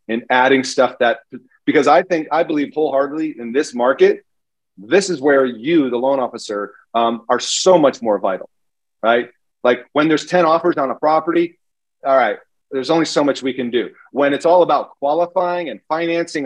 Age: 40-59